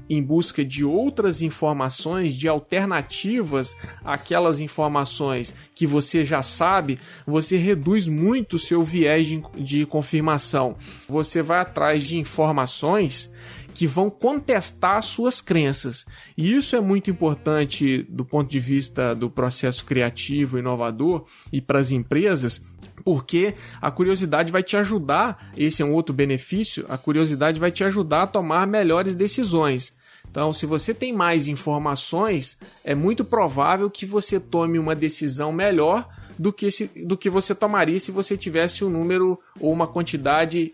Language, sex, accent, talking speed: Portuguese, male, Brazilian, 145 wpm